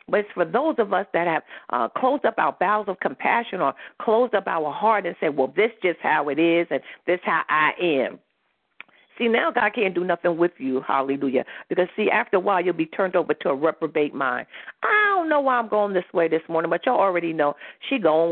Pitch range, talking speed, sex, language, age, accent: 165-250 Hz, 235 wpm, female, English, 50-69, American